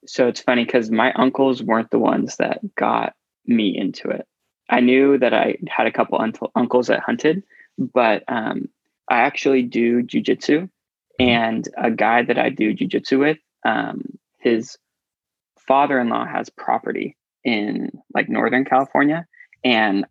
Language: English